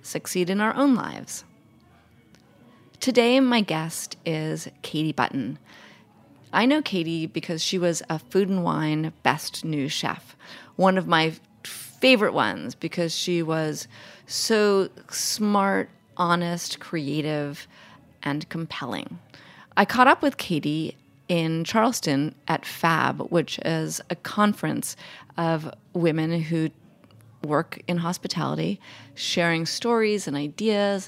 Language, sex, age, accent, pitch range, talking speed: English, female, 30-49, American, 150-190 Hz, 120 wpm